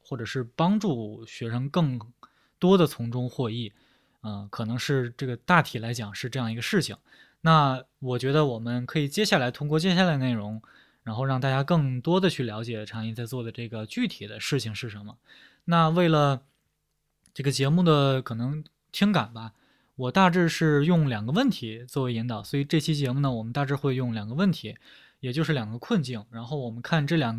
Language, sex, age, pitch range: Chinese, male, 20-39, 120-155 Hz